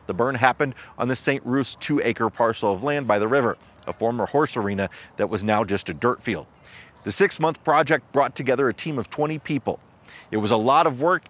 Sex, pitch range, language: male, 105-145 Hz, English